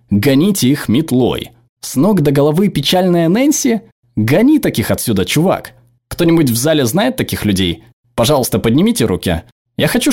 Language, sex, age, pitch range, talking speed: Russian, male, 20-39, 115-150 Hz, 140 wpm